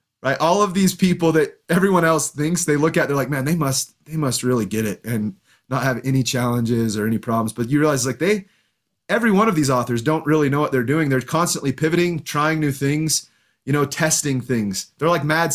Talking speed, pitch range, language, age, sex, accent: 230 wpm, 130-170 Hz, English, 30-49, male, American